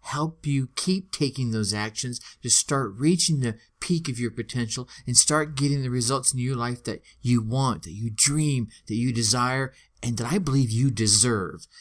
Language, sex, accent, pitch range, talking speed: English, male, American, 120-165 Hz, 190 wpm